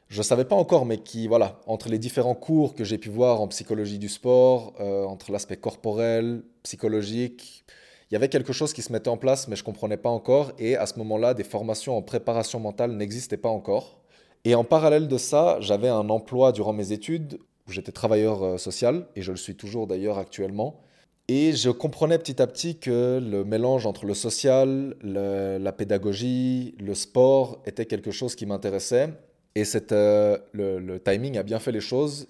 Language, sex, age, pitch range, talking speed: French, male, 20-39, 100-125 Hz, 200 wpm